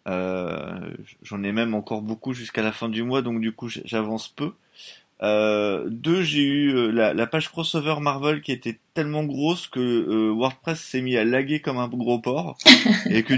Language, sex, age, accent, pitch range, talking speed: French, male, 20-39, French, 105-135 Hz, 190 wpm